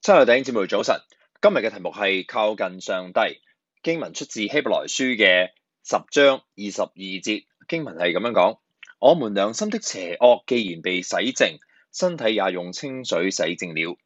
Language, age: Chinese, 20-39